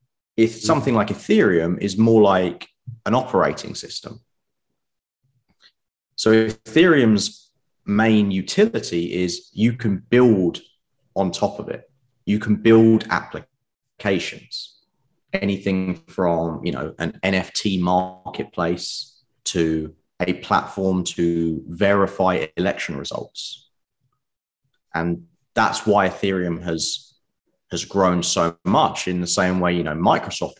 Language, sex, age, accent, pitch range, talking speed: English, male, 30-49, British, 85-115 Hz, 105 wpm